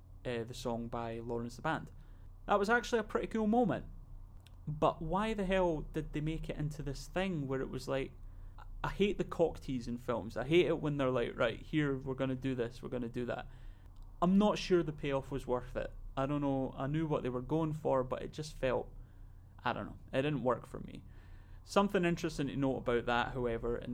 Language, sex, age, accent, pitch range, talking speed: English, male, 20-39, British, 120-140 Hz, 225 wpm